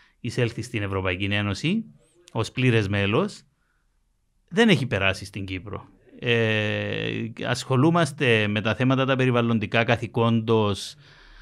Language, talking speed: Greek, 105 wpm